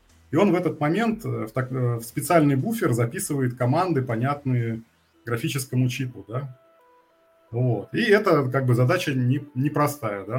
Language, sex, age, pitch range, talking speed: Russian, male, 20-39, 120-145 Hz, 105 wpm